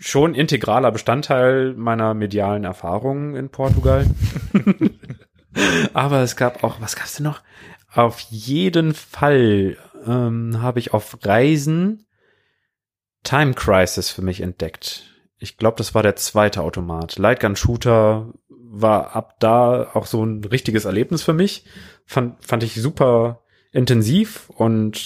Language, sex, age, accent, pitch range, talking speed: German, male, 30-49, German, 100-125 Hz, 130 wpm